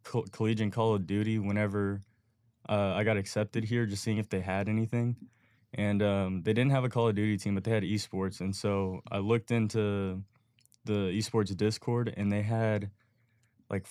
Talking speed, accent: 180 wpm, American